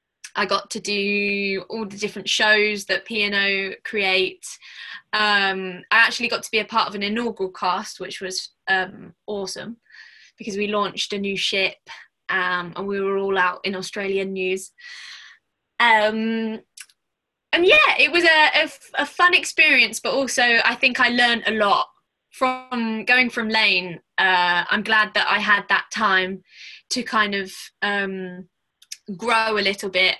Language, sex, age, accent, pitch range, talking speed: English, female, 20-39, British, 195-235 Hz, 160 wpm